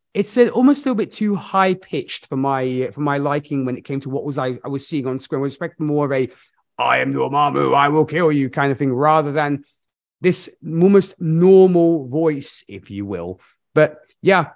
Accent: British